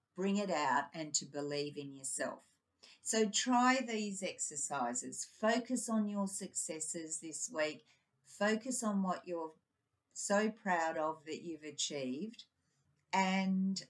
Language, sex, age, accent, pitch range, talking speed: English, female, 50-69, Australian, 155-205 Hz, 125 wpm